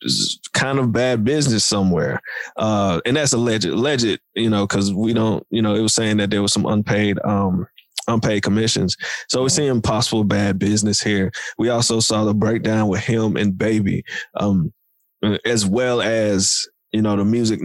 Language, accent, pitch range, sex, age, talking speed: English, American, 105-125 Hz, male, 20-39, 175 wpm